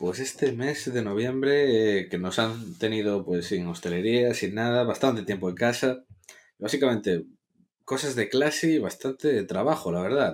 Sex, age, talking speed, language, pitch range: male, 20-39, 165 wpm, Spanish, 90-120 Hz